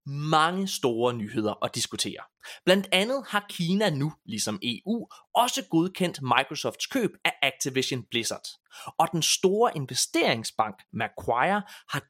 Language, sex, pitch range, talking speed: Danish, male, 125-195 Hz, 125 wpm